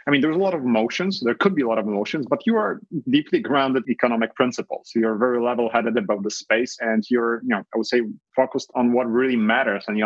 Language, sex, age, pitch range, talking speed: English, male, 30-49, 110-130 Hz, 255 wpm